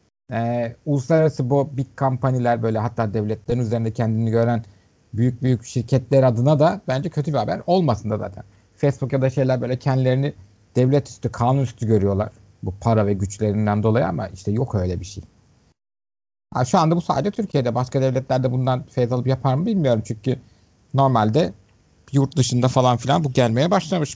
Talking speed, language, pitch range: 165 wpm, Turkish, 110-150 Hz